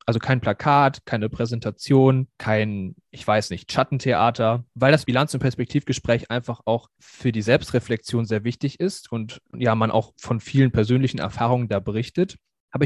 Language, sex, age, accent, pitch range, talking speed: German, male, 20-39, German, 110-135 Hz, 160 wpm